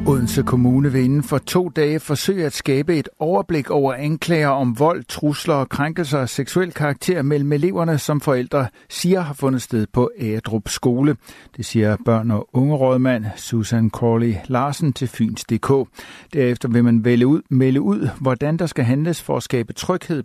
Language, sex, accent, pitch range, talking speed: Danish, male, native, 120-145 Hz, 170 wpm